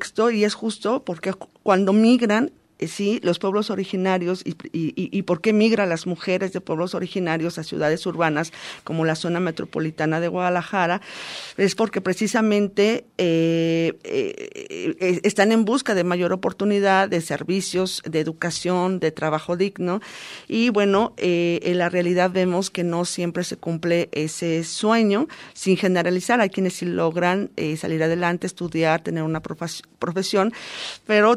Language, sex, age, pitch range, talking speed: Spanish, female, 40-59, 175-215 Hz, 150 wpm